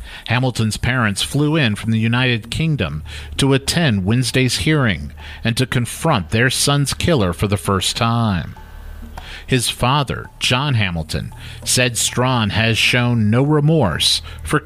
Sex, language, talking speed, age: male, English, 135 wpm, 50-69